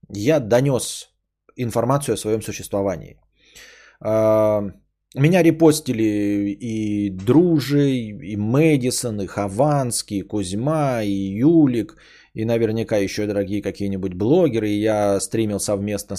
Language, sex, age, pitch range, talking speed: Bulgarian, male, 20-39, 105-150 Hz, 100 wpm